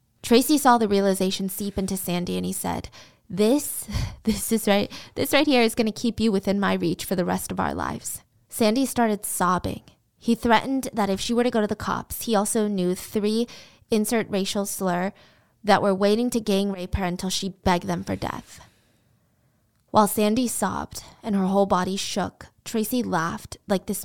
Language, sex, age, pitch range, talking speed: English, female, 20-39, 195-245 Hz, 190 wpm